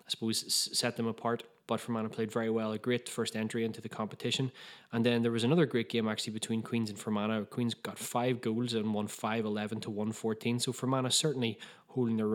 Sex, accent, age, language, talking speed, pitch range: male, Irish, 20-39, English, 215 wpm, 110-125 Hz